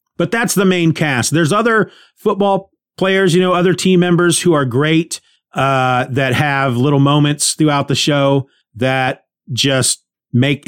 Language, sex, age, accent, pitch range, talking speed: English, male, 30-49, American, 120-170 Hz, 155 wpm